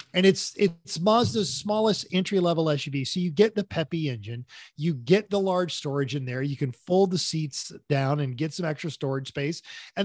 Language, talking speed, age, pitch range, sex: English, 195 wpm, 40-59, 150-190 Hz, male